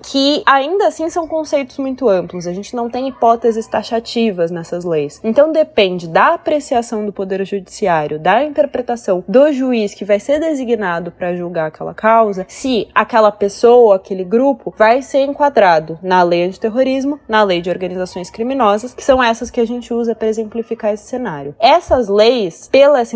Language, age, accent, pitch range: Portuguese, 20-39, Brazilian, 200-250 Hz